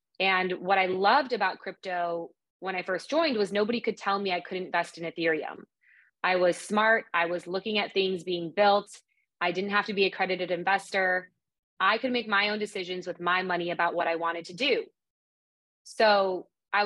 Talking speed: 195 wpm